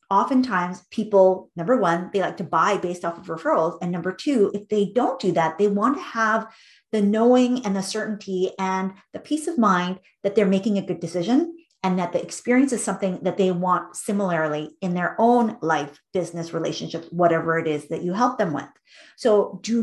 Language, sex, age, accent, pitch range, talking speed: English, female, 30-49, American, 180-240 Hz, 200 wpm